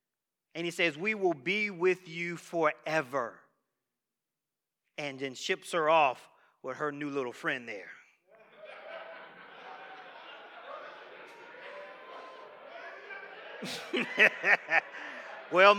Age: 40-59